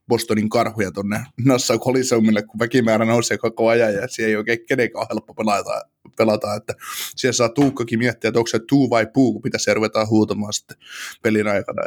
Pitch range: 110-130 Hz